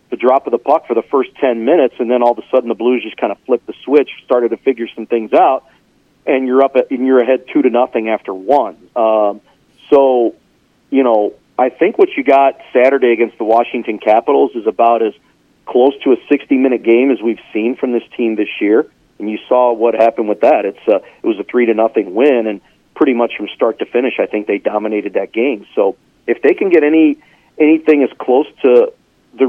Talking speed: 230 wpm